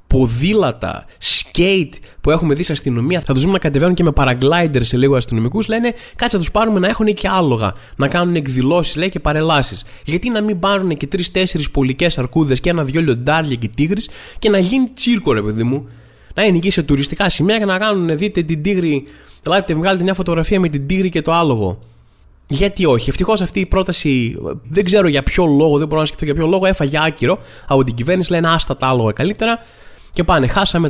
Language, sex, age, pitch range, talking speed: Greek, male, 20-39, 130-185 Hz, 205 wpm